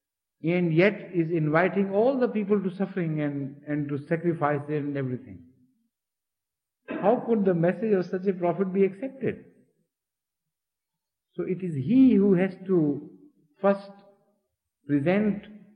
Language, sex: English, male